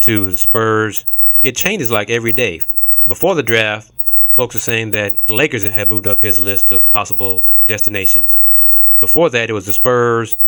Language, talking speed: English, 180 wpm